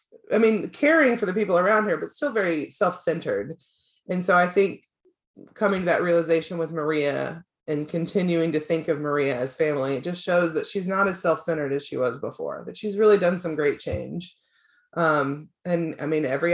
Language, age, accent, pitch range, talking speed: English, 20-39, American, 160-205 Hz, 195 wpm